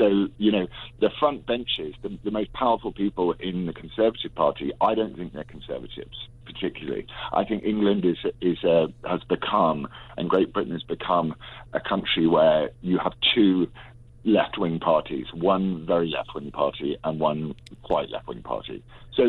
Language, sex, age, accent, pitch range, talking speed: English, male, 50-69, British, 85-120 Hz, 160 wpm